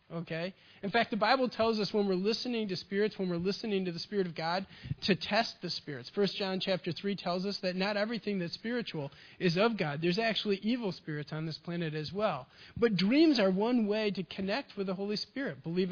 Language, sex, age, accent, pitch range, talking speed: English, male, 40-59, American, 180-215 Hz, 220 wpm